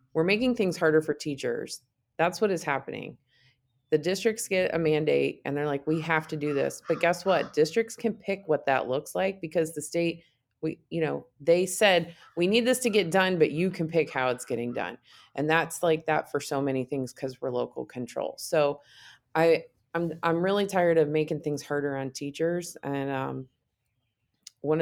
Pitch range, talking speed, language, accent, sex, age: 140-170 Hz, 200 wpm, English, American, female, 20-39